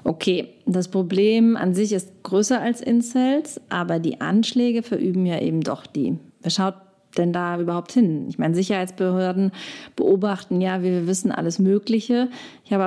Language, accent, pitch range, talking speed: German, German, 180-220 Hz, 165 wpm